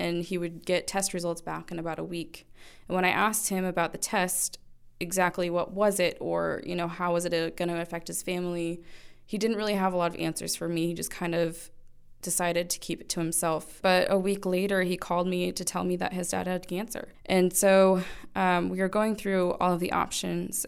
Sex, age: female, 20-39